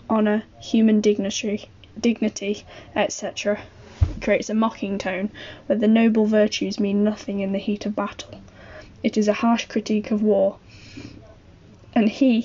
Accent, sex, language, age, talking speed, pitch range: British, female, English, 10-29, 140 wpm, 205-220 Hz